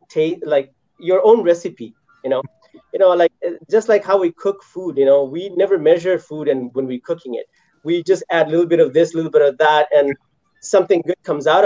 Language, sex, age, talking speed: English, male, 30-49, 230 wpm